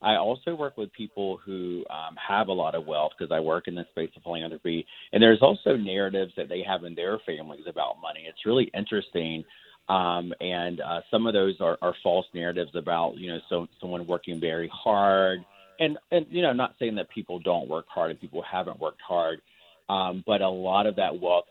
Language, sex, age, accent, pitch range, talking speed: English, male, 30-49, American, 85-100 Hz, 210 wpm